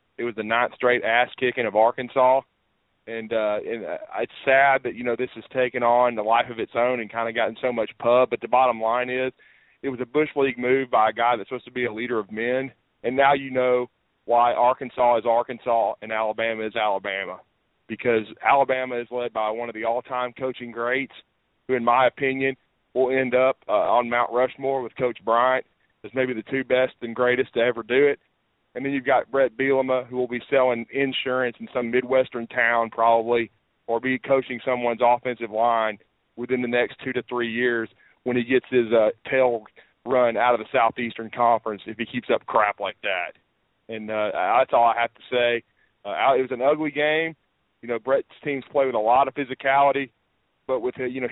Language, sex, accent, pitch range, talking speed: English, male, American, 115-130 Hz, 210 wpm